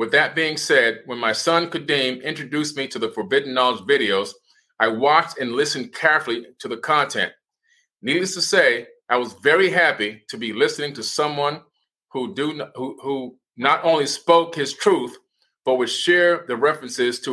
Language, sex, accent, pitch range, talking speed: English, male, American, 115-155 Hz, 165 wpm